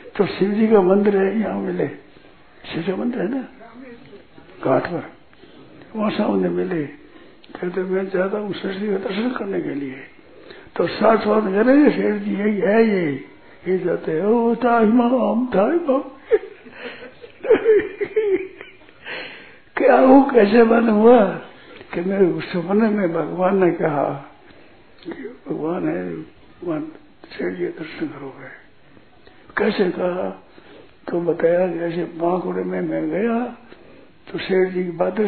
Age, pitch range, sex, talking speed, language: 60-79, 175-230 Hz, male, 130 wpm, Hindi